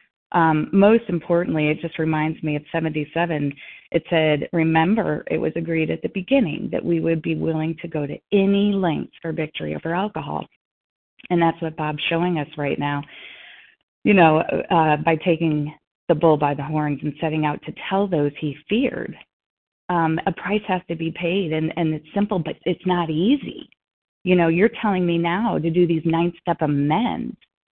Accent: American